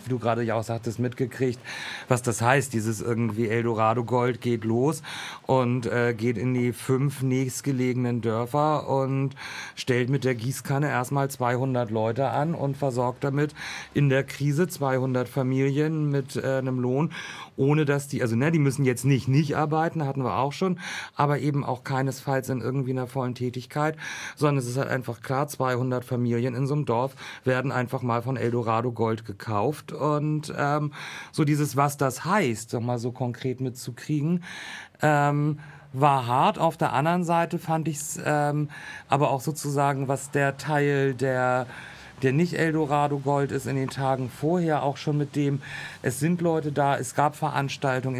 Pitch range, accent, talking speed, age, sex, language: 125-145 Hz, German, 165 wpm, 40-59, male, German